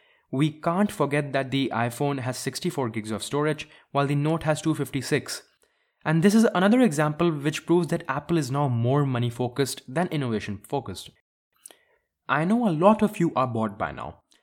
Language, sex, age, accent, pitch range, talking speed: English, male, 20-39, Indian, 125-170 Hz, 180 wpm